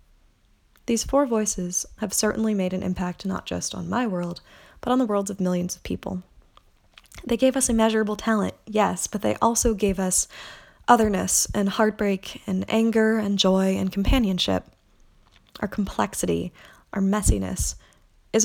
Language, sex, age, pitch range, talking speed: English, female, 20-39, 180-220 Hz, 150 wpm